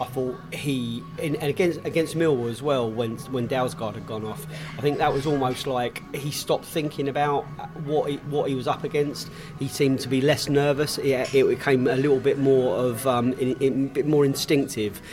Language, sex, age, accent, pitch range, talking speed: English, male, 30-49, British, 120-140 Hz, 210 wpm